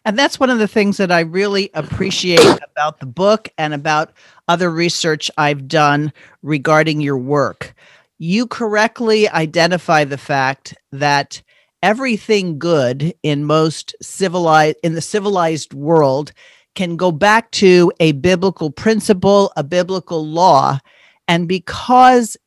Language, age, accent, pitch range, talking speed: English, 50-69, American, 155-190 Hz, 130 wpm